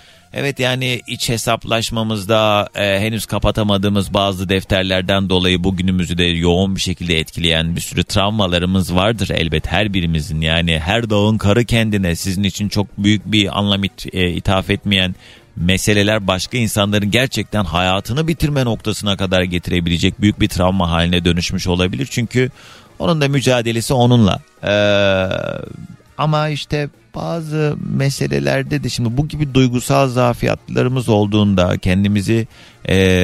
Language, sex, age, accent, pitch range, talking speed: Turkish, male, 40-59, native, 95-125 Hz, 130 wpm